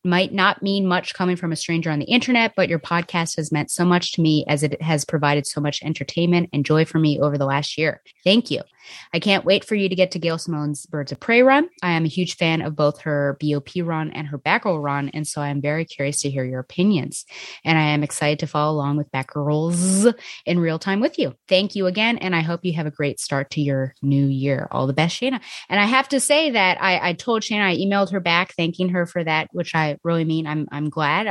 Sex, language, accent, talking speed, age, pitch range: female, English, American, 255 wpm, 20-39, 155-200 Hz